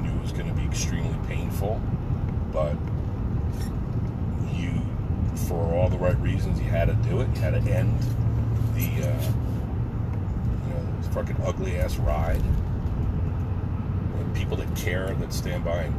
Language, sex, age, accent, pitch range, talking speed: English, male, 40-59, American, 95-110 Hz, 145 wpm